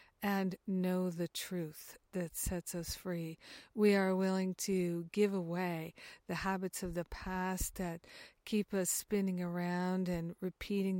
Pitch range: 175-195 Hz